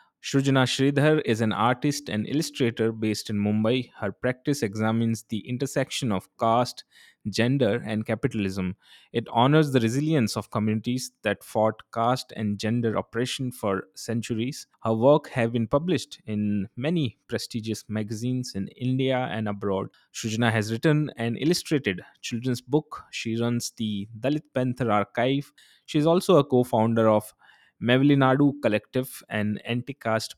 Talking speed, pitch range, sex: 140 wpm, 110-130 Hz, male